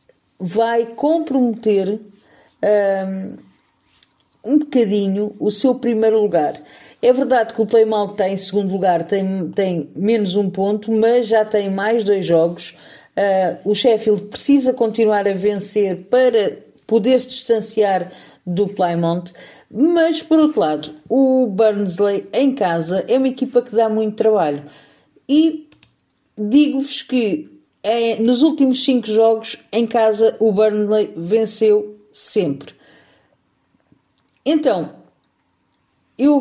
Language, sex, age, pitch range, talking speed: Portuguese, female, 40-59, 195-255 Hz, 115 wpm